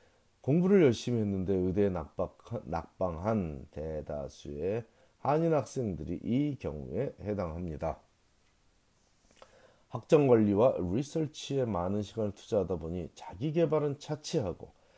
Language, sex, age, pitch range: Korean, male, 40-59, 90-135 Hz